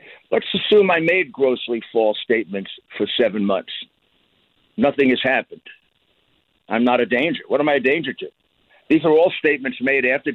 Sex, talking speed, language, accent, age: male, 170 wpm, English, American, 60-79